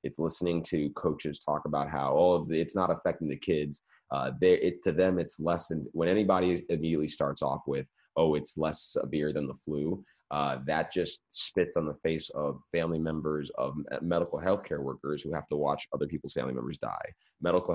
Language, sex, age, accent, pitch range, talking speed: English, male, 30-49, American, 70-85 Hz, 200 wpm